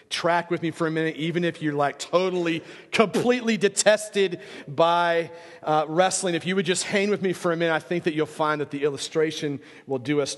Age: 40-59